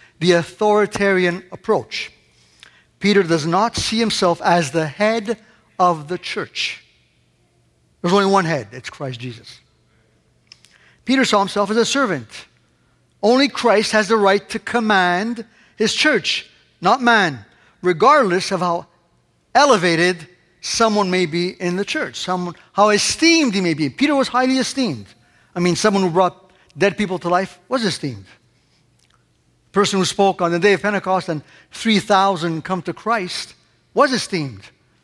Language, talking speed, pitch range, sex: English, 140 wpm, 175-220 Hz, male